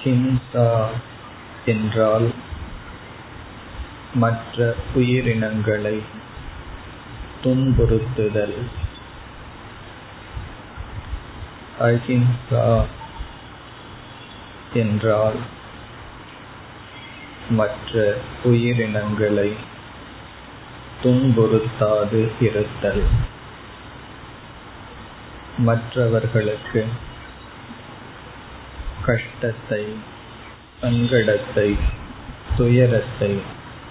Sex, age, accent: male, 50-69, native